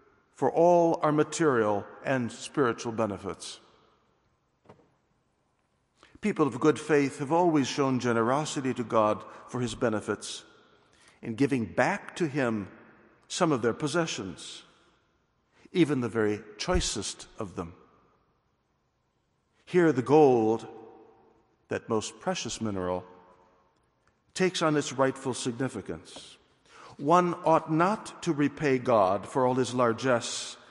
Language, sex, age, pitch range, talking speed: English, male, 60-79, 115-155 Hz, 110 wpm